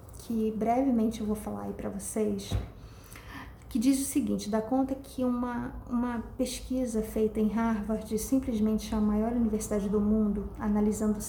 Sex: female